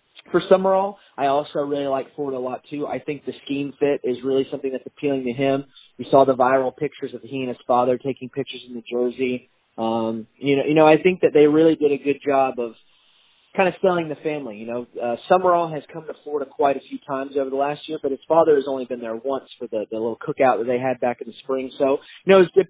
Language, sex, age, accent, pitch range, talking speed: English, male, 30-49, American, 125-150 Hz, 260 wpm